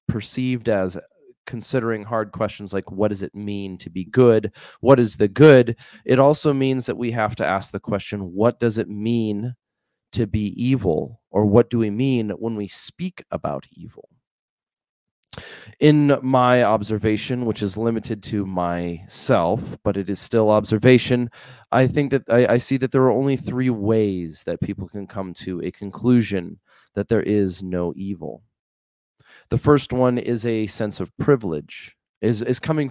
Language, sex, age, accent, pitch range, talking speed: English, male, 20-39, American, 100-125 Hz, 170 wpm